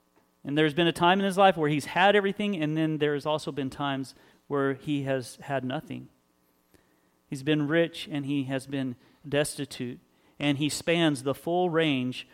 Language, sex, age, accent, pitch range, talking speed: English, male, 40-59, American, 140-170 Hz, 185 wpm